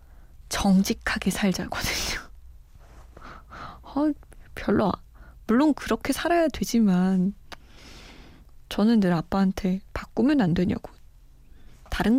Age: 20-39